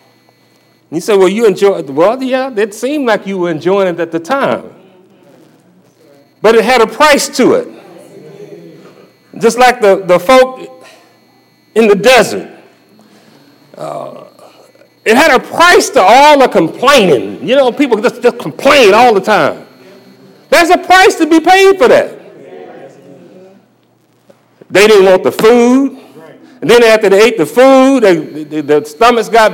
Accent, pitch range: American, 195-295 Hz